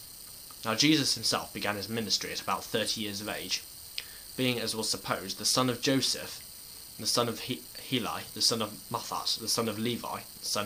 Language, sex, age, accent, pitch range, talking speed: English, male, 10-29, British, 105-115 Hz, 190 wpm